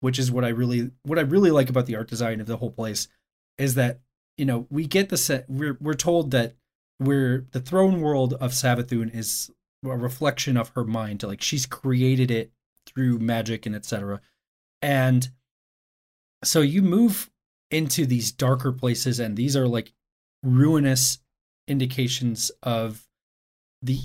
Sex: male